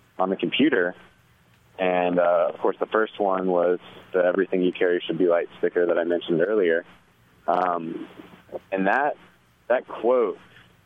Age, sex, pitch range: 20-39, male, 80-90 Hz